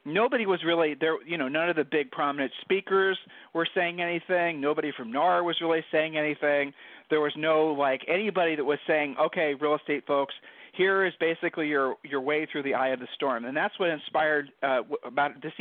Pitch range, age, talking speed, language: 140-170 Hz, 40-59, 205 wpm, English